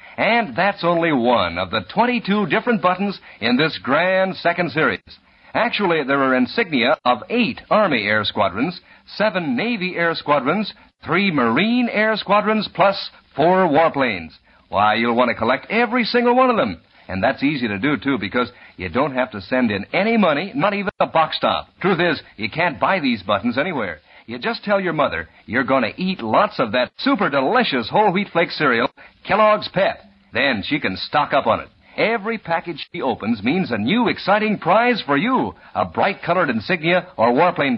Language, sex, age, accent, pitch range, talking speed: English, male, 50-69, American, 160-230 Hz, 185 wpm